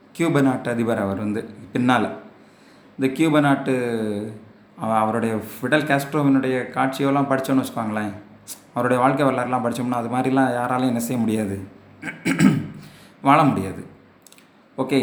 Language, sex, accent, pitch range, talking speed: Tamil, male, native, 110-135 Hz, 115 wpm